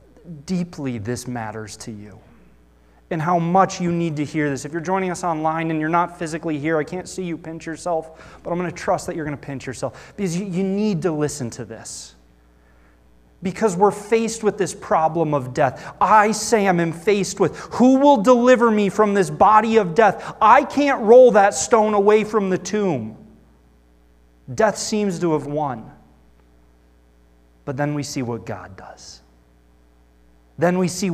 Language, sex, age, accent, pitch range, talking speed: English, male, 30-49, American, 135-210 Hz, 180 wpm